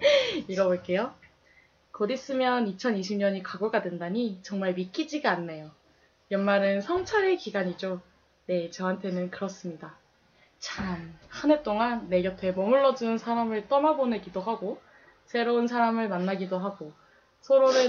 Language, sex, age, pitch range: Korean, female, 20-39, 190-265 Hz